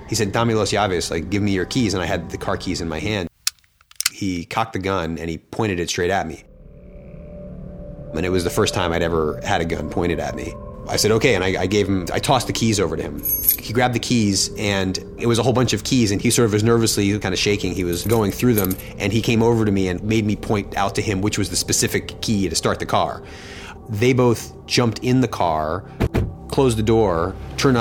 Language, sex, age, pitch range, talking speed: English, male, 30-49, 90-110 Hz, 250 wpm